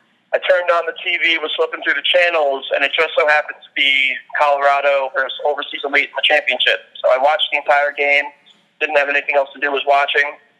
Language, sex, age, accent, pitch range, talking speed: English, male, 30-49, American, 135-150 Hz, 215 wpm